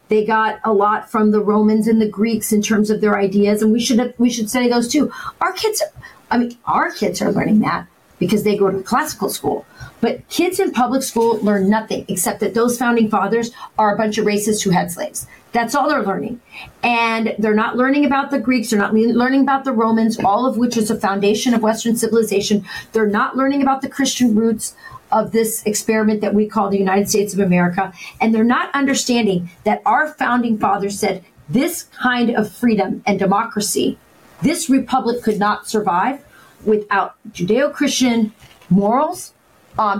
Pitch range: 210-255 Hz